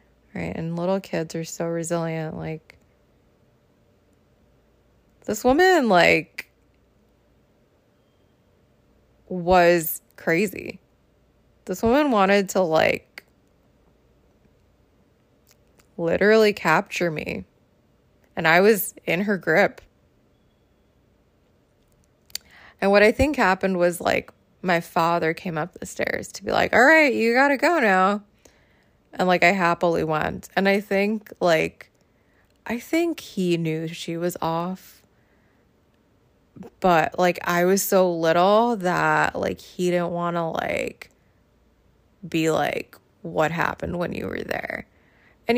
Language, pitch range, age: English, 170-210 Hz, 20-39